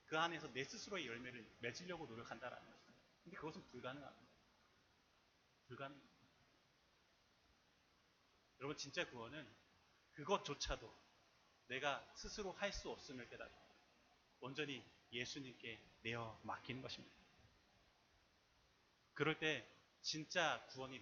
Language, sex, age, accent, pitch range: Korean, male, 30-49, native, 115-175 Hz